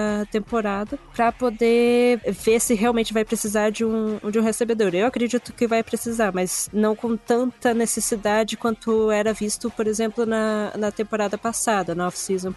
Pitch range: 195-225 Hz